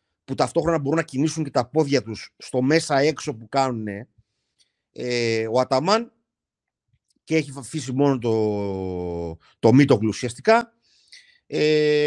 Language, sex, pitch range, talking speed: Greek, male, 115-160 Hz, 130 wpm